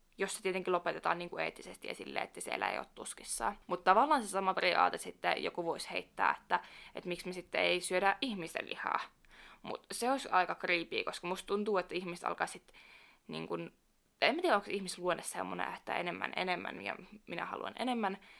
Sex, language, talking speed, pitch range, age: female, Finnish, 185 wpm, 175-220 Hz, 20-39